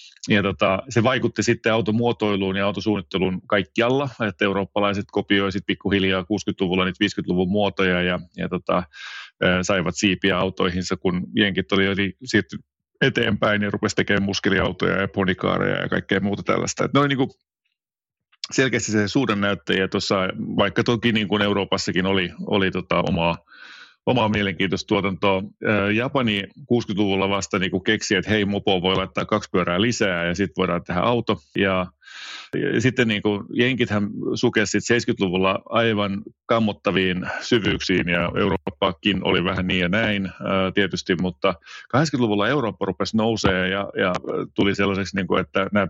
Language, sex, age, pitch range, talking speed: Finnish, male, 30-49, 95-105 Hz, 130 wpm